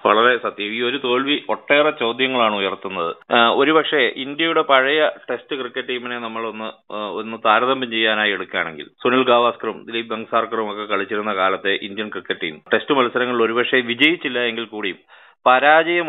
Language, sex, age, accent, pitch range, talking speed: Malayalam, male, 30-49, native, 120-150 Hz, 135 wpm